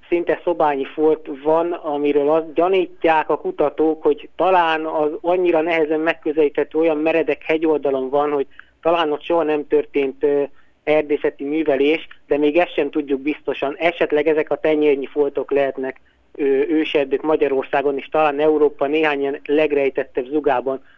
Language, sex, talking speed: Hungarian, male, 135 wpm